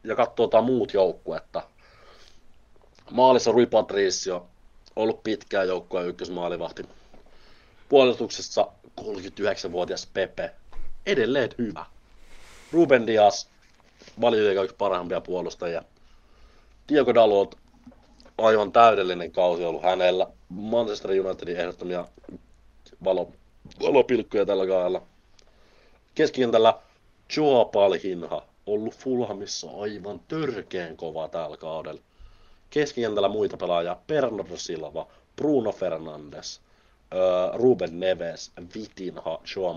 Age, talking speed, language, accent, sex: 30-49, 85 wpm, Finnish, native, male